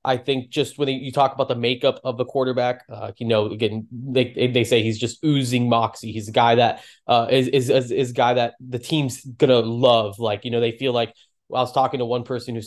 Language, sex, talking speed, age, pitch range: English, male, 250 wpm, 20-39, 115-130 Hz